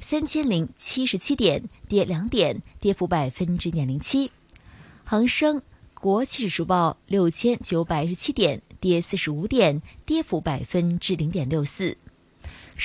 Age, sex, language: 20-39, female, Chinese